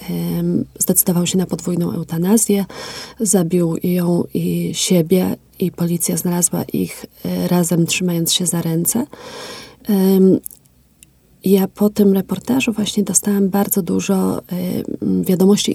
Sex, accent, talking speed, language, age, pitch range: female, native, 105 wpm, Polish, 30-49, 175-205 Hz